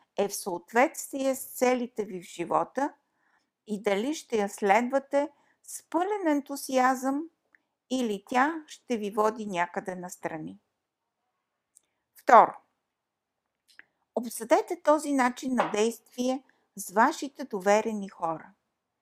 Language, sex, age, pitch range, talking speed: Bulgarian, female, 50-69, 220-280 Hz, 105 wpm